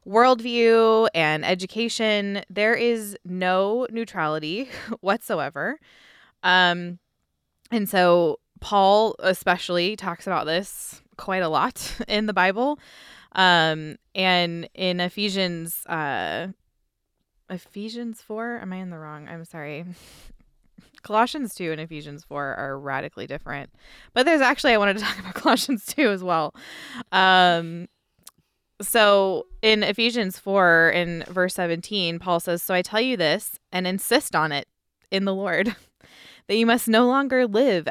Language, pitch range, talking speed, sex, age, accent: English, 170-220 Hz, 135 wpm, female, 20-39, American